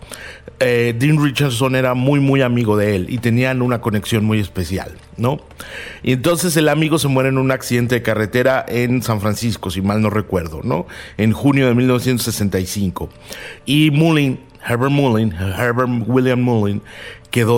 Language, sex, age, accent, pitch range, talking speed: Spanish, male, 50-69, Mexican, 110-135 Hz, 160 wpm